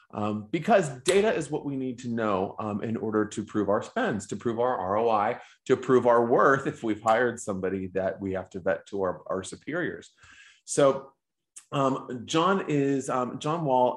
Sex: male